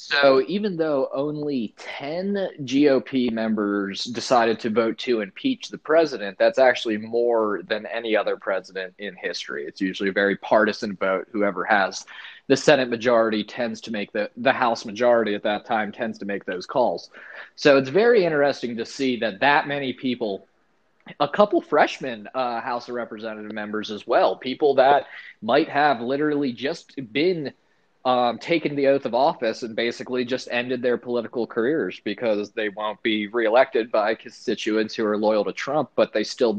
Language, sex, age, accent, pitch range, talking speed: English, male, 20-39, American, 110-145 Hz, 175 wpm